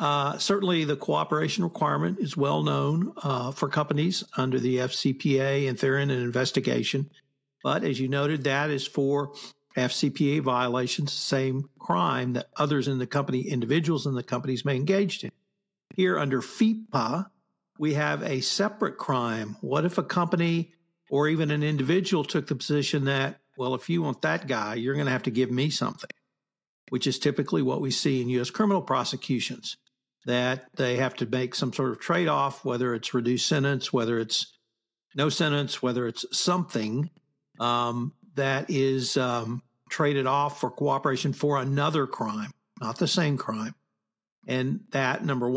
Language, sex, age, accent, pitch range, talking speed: English, male, 50-69, American, 130-150 Hz, 165 wpm